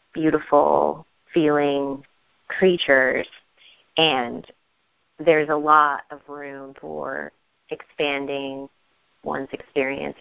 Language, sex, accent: English, female, American